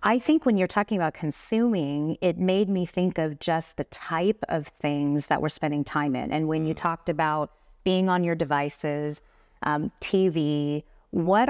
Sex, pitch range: female, 150-180 Hz